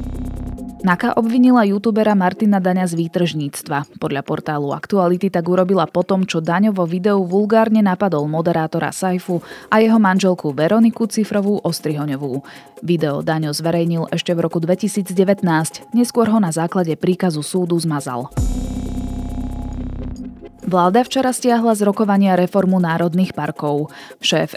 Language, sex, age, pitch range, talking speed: Slovak, female, 20-39, 155-195 Hz, 120 wpm